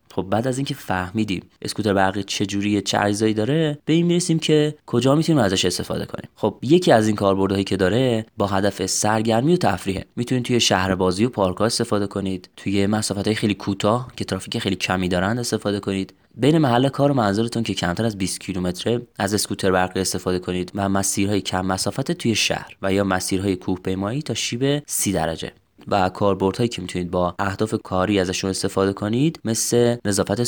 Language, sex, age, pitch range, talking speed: Persian, male, 20-39, 95-120 Hz, 180 wpm